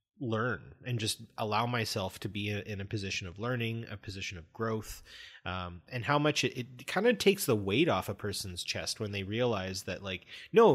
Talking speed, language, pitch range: 205 wpm, English, 100-135 Hz